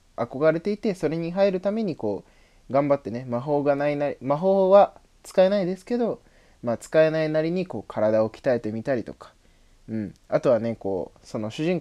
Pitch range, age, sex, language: 105-165 Hz, 20-39, male, Japanese